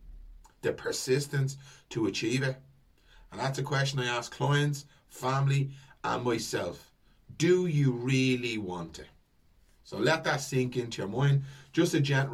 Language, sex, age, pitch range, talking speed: English, male, 30-49, 110-130 Hz, 145 wpm